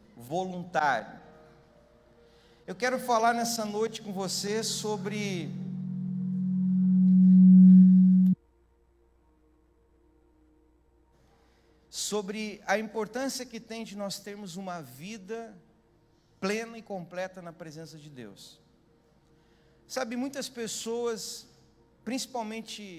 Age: 50-69